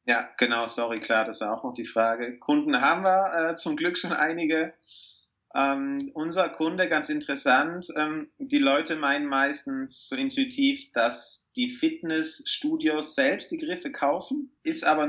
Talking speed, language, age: 155 wpm, German, 30-49